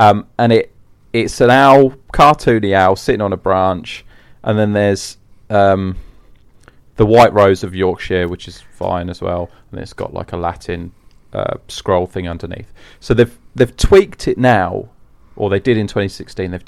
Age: 30-49